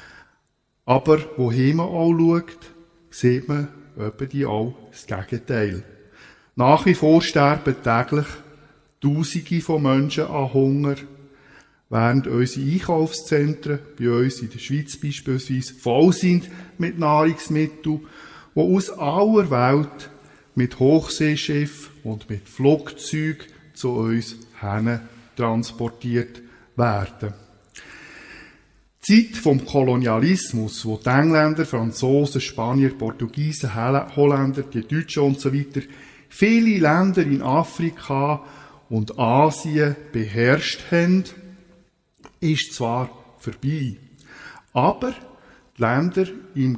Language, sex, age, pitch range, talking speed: German, male, 50-69, 125-155 Hz, 100 wpm